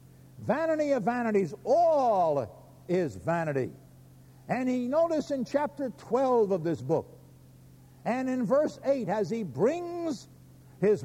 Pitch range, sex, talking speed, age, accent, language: 130-220 Hz, male, 125 wpm, 60-79, American, English